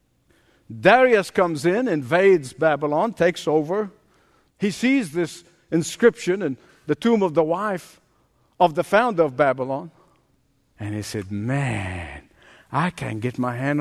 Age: 60-79